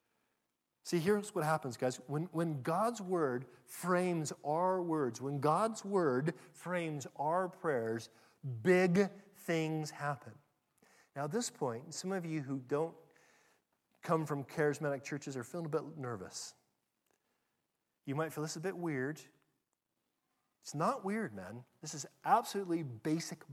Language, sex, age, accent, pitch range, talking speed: English, male, 40-59, American, 145-190 Hz, 140 wpm